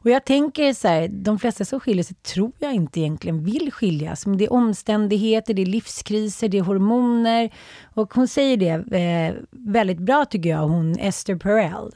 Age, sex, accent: 30-49, female, native